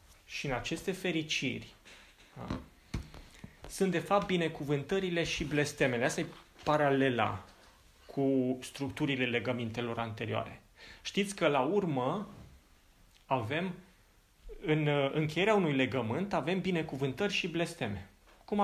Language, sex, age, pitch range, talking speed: Romanian, male, 30-49, 125-175 Hz, 105 wpm